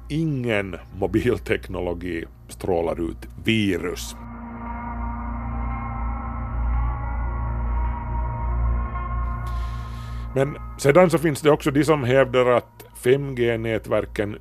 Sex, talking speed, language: male, 65 wpm, Swedish